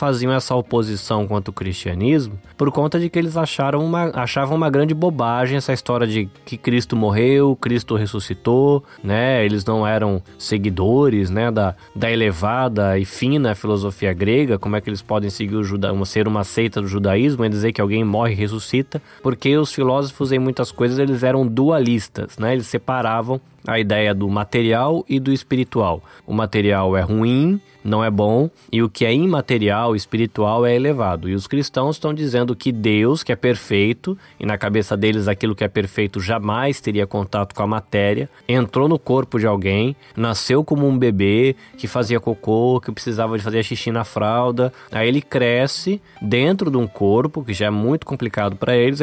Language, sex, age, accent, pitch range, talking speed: Portuguese, male, 20-39, Brazilian, 105-140 Hz, 175 wpm